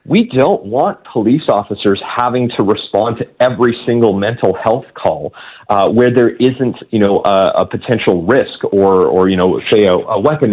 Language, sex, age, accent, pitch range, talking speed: English, male, 40-59, American, 100-120 Hz, 180 wpm